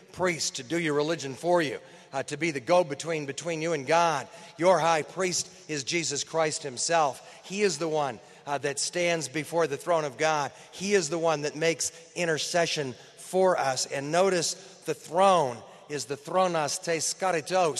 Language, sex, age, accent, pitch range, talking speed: English, male, 40-59, American, 145-175 Hz, 170 wpm